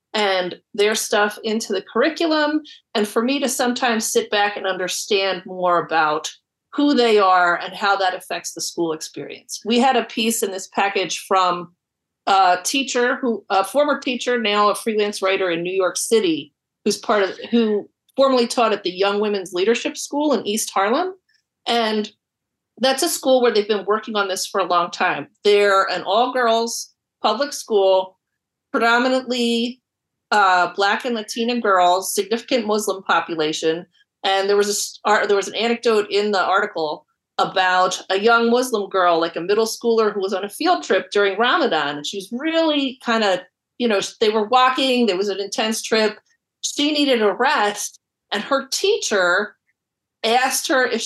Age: 40-59